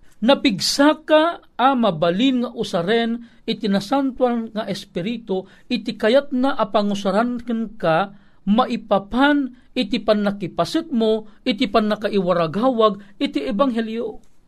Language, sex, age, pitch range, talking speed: Filipino, male, 50-69, 210-255 Hz, 100 wpm